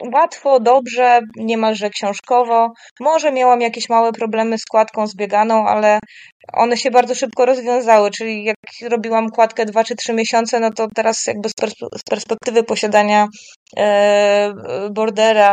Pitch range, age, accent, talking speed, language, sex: 215-245 Hz, 20-39, native, 130 wpm, Polish, female